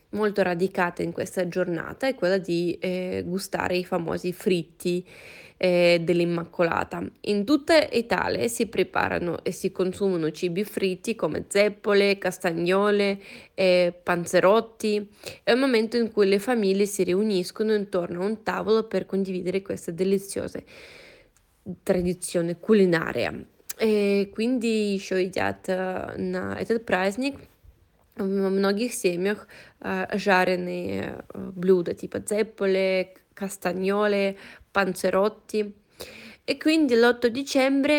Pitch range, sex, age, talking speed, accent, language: 185-220 Hz, female, 20-39, 110 wpm, native, Italian